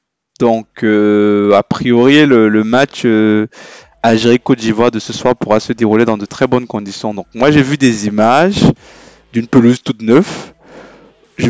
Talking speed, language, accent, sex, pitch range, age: 170 wpm, French, French, male, 110-130 Hz, 20-39